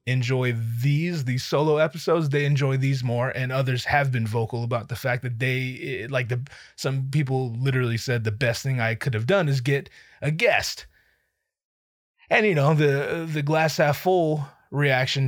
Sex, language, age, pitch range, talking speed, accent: male, English, 20-39, 115-145 Hz, 175 wpm, American